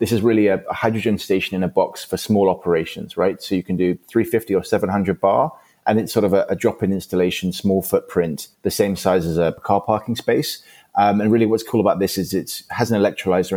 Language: English